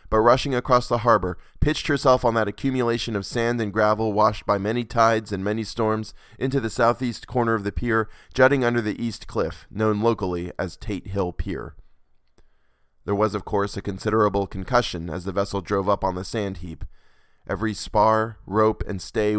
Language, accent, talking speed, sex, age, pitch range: English, American, 185 wpm, male, 20-39, 95-115 Hz